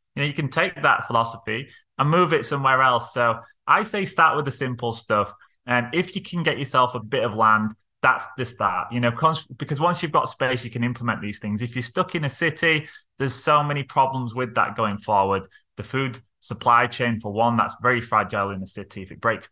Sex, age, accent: male, 20-39, British